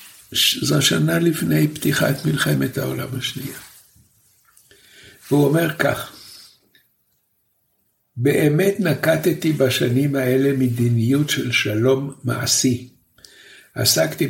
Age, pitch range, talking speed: 60-79, 115-135 Hz, 80 wpm